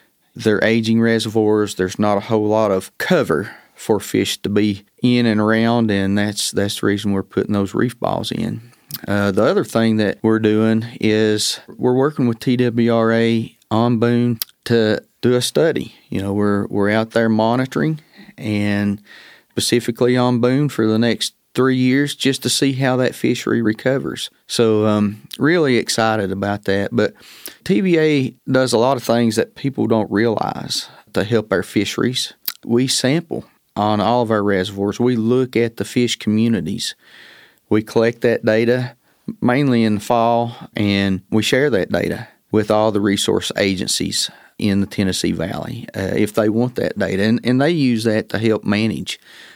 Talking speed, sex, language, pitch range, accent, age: 170 wpm, male, English, 105-120 Hz, American, 40-59